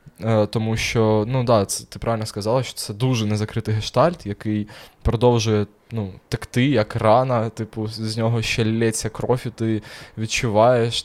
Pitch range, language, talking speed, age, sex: 110-130 Hz, Ukrainian, 150 wpm, 20-39, male